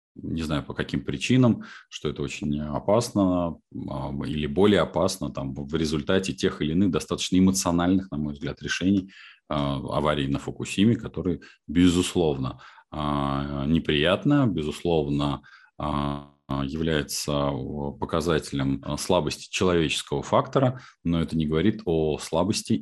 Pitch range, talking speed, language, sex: 75-95 Hz, 110 wpm, Russian, male